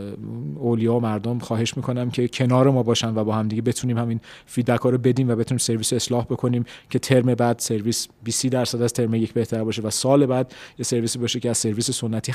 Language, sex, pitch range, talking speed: Persian, male, 110-125 Hz, 205 wpm